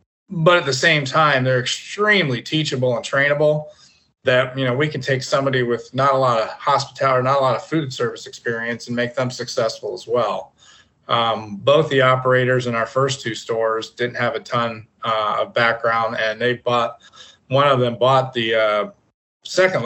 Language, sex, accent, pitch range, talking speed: English, male, American, 115-145 Hz, 190 wpm